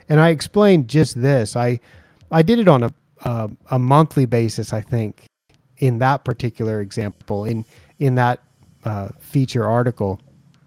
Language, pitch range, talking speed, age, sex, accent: English, 115-135 Hz, 150 wpm, 30-49, male, American